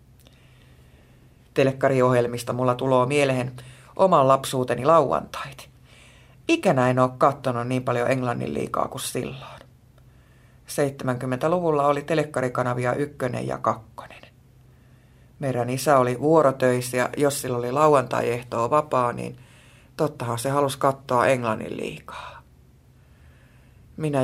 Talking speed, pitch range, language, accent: 100 wpm, 125-145 Hz, Finnish, native